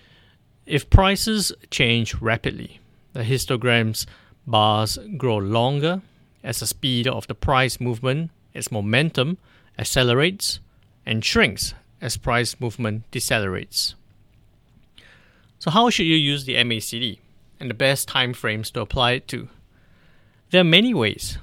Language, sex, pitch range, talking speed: English, male, 110-135 Hz, 125 wpm